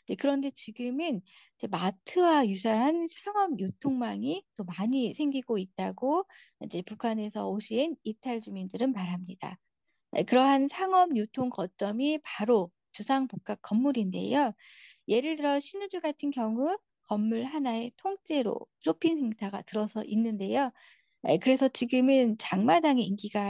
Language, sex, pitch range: Korean, female, 215-285 Hz